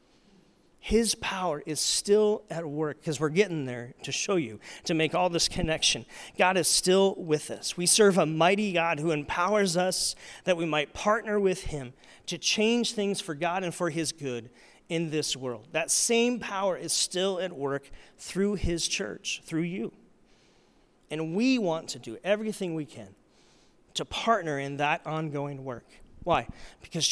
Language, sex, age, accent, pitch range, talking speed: English, male, 40-59, American, 145-200 Hz, 170 wpm